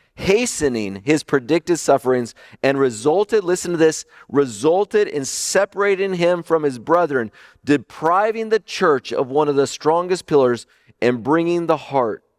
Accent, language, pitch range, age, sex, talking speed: American, English, 105-150 Hz, 40-59, male, 140 wpm